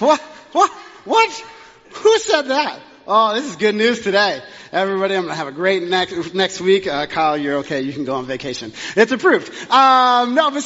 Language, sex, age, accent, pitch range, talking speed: English, male, 30-49, American, 160-230 Hz, 205 wpm